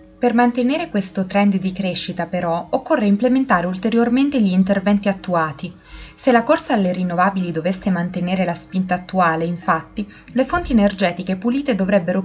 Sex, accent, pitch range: female, native, 180-220 Hz